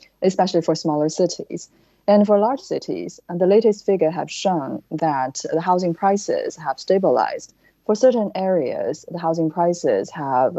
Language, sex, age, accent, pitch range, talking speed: English, female, 20-39, Chinese, 150-190 Hz, 155 wpm